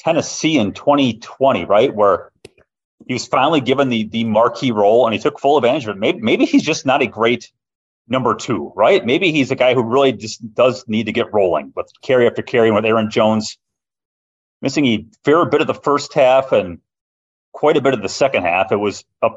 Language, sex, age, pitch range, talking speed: English, male, 30-49, 100-125 Hz, 210 wpm